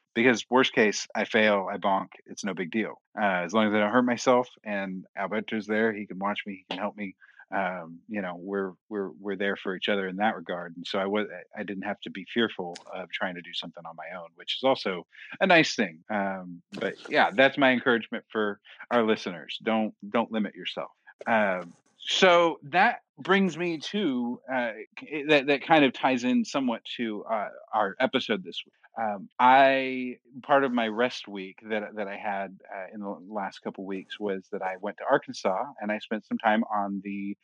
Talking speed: 210 wpm